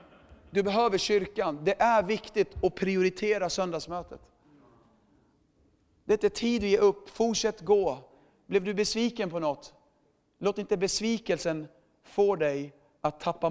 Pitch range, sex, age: 175-230 Hz, male, 40-59